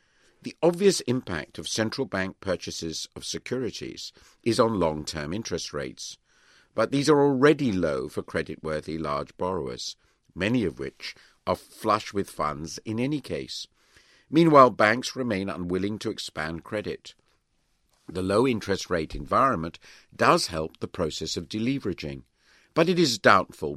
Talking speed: 140 wpm